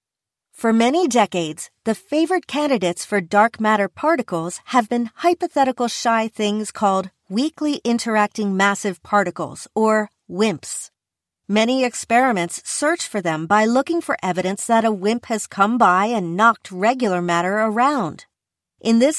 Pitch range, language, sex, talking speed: 195-260 Hz, English, female, 135 wpm